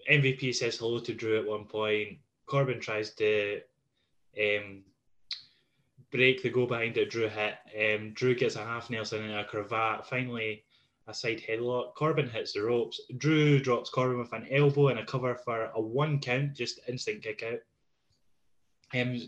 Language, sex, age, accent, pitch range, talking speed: English, male, 10-29, British, 110-140 Hz, 165 wpm